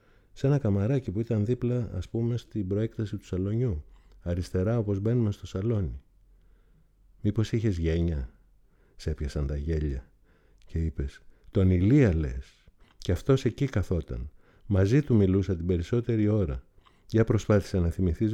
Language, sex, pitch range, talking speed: Greek, male, 80-105 Hz, 140 wpm